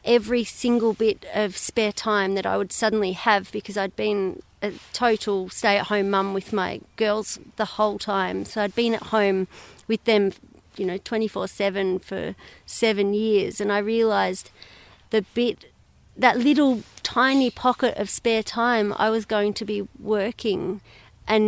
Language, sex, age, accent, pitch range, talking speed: English, female, 30-49, Australian, 195-225 Hz, 155 wpm